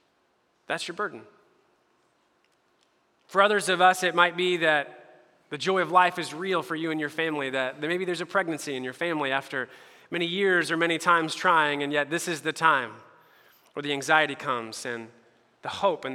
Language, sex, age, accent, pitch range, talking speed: English, male, 30-49, American, 145-190 Hz, 190 wpm